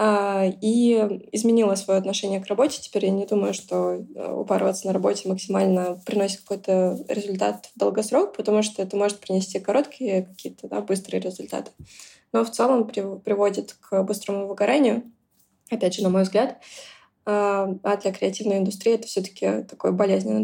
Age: 20-39